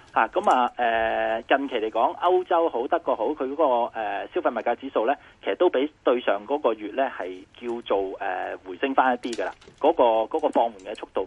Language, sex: Chinese, male